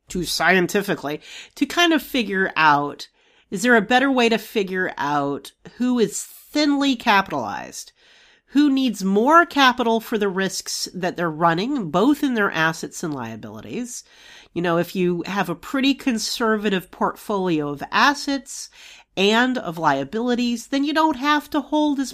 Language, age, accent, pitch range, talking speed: English, 40-59, American, 180-280 Hz, 155 wpm